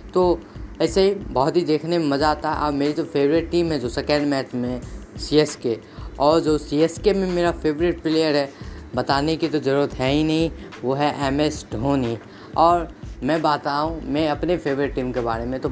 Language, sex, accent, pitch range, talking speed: Hindi, female, native, 130-155 Hz, 215 wpm